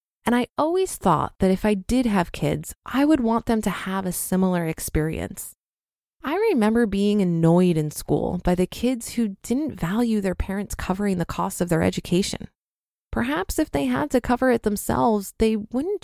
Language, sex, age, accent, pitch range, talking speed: English, female, 20-39, American, 180-240 Hz, 185 wpm